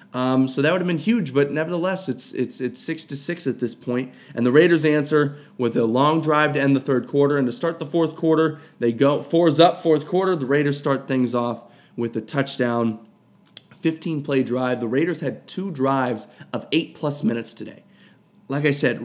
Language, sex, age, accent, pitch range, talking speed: English, male, 20-39, American, 125-160 Hz, 210 wpm